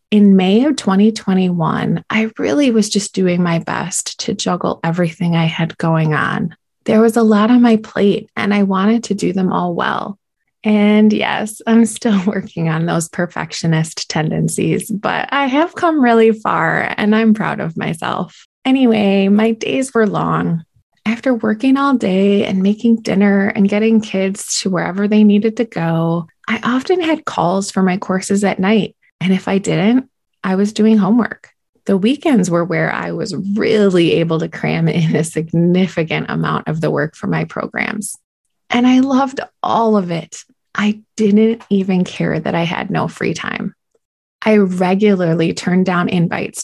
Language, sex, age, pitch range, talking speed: English, female, 20-39, 185-225 Hz, 170 wpm